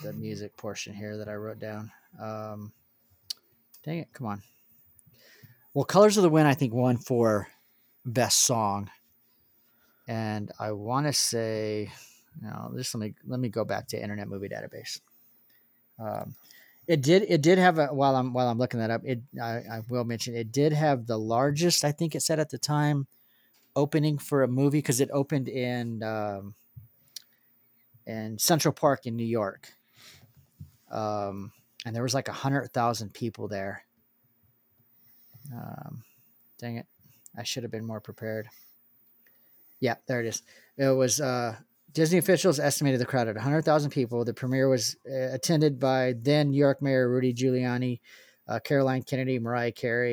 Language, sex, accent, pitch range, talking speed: English, male, American, 110-135 Hz, 160 wpm